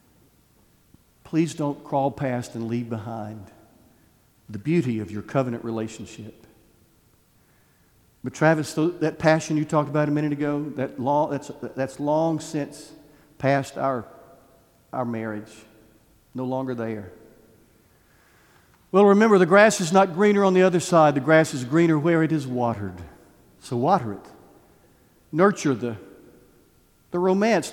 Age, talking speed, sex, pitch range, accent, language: 50-69, 130 wpm, male, 115-155 Hz, American, English